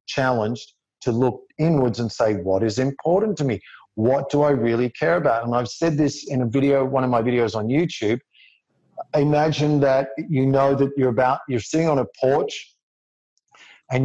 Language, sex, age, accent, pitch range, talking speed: English, male, 50-69, Australian, 120-150 Hz, 185 wpm